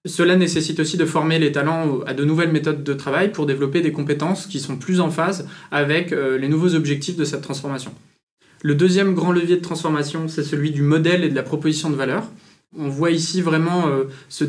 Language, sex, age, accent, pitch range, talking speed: French, male, 20-39, French, 145-180 Hz, 205 wpm